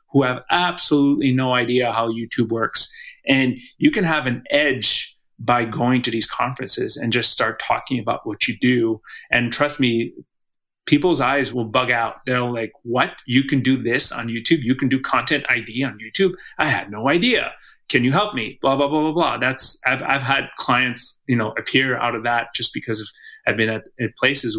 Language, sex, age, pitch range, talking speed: English, male, 30-49, 115-130 Hz, 205 wpm